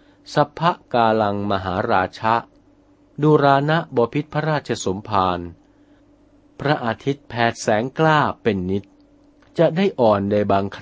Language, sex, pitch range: Thai, male, 105-160 Hz